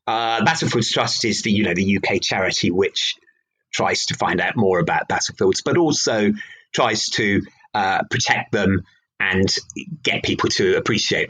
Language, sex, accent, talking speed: English, male, British, 160 wpm